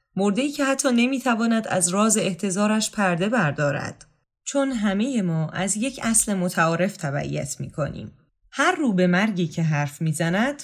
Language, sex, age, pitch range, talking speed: Persian, female, 10-29, 165-225 Hz, 135 wpm